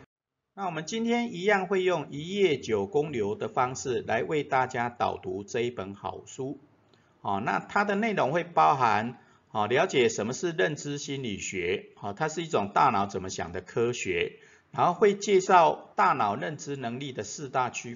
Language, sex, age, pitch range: Chinese, male, 50-69, 120-195 Hz